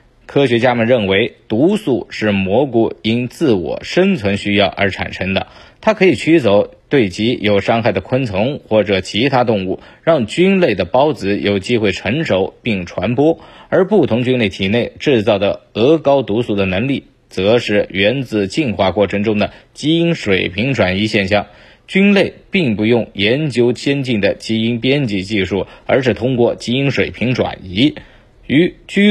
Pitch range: 100-130 Hz